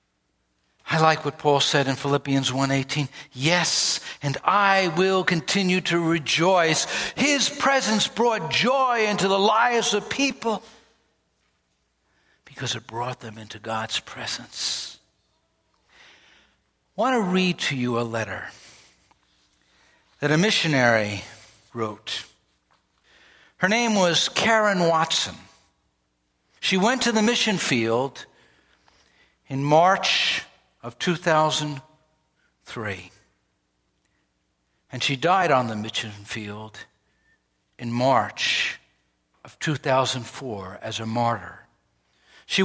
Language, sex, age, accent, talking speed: English, male, 60-79, American, 105 wpm